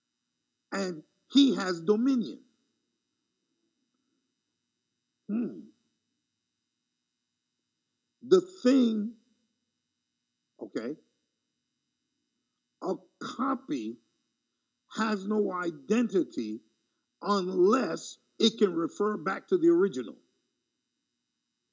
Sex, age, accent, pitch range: male, 50-69, American, 210-285 Hz